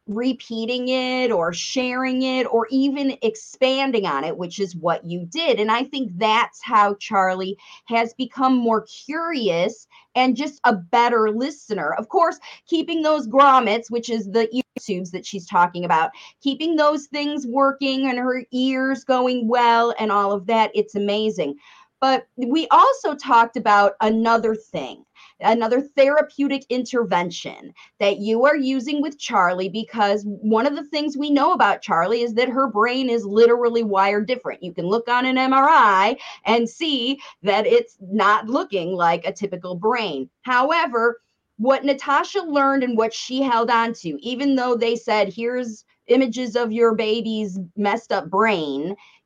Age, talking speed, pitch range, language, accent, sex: 30-49, 155 wpm, 210-265 Hz, English, American, female